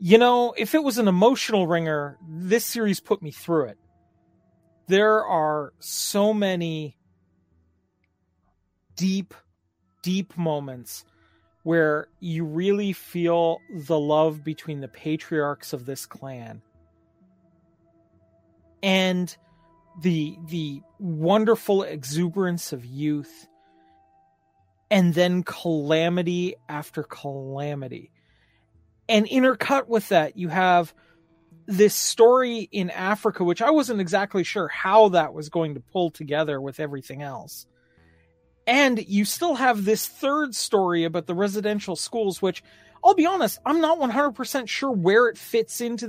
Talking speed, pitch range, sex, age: 120 wpm, 145-210 Hz, male, 40-59